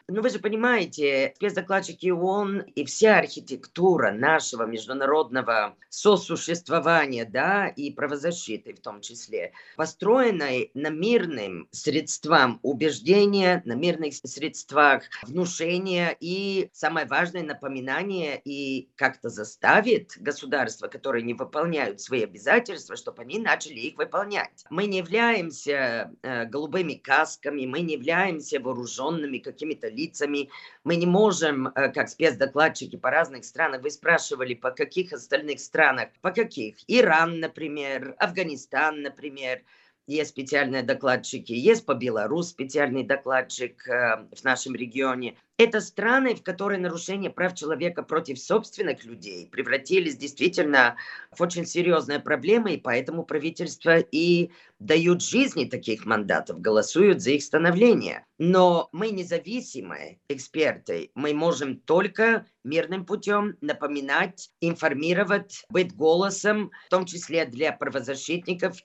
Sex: female